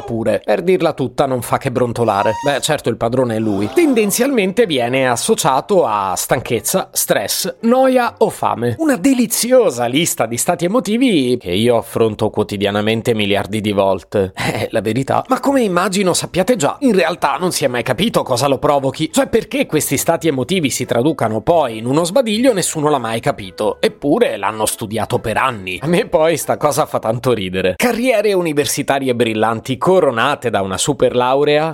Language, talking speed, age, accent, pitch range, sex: Italian, 170 wpm, 30-49, native, 120-190 Hz, male